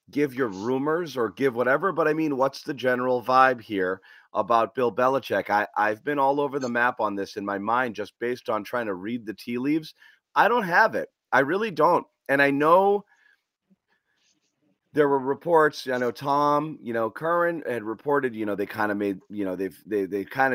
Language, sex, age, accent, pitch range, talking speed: English, male, 30-49, American, 120-160 Hz, 205 wpm